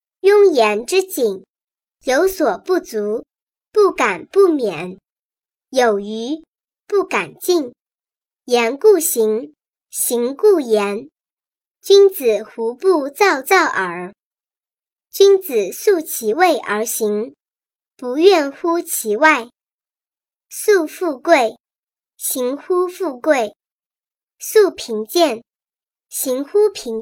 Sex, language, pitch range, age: male, Chinese, 235-370 Hz, 20-39